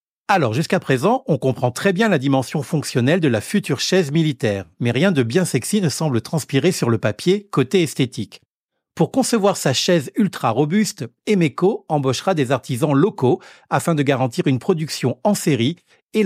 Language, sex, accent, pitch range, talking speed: French, male, French, 130-185 Hz, 175 wpm